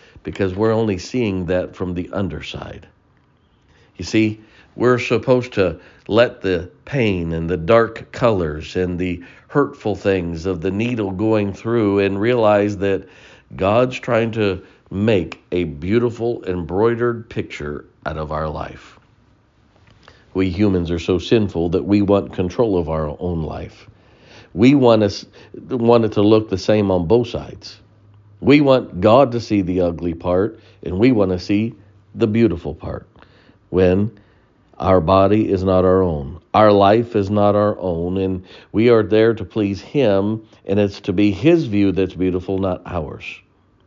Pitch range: 90-110 Hz